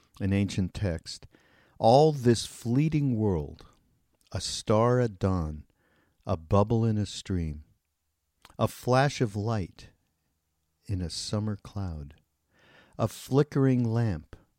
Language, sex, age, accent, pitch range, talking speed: English, male, 50-69, American, 90-115 Hz, 110 wpm